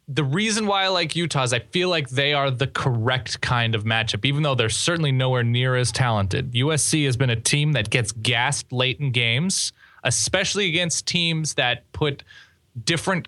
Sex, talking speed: male, 190 wpm